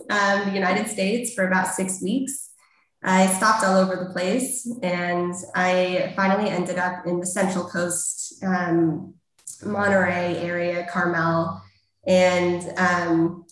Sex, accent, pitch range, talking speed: female, American, 180-215 Hz, 130 wpm